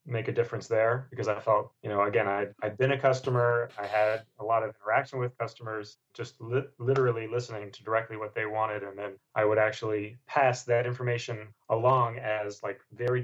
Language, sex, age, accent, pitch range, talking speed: English, male, 30-49, American, 110-125 Hz, 195 wpm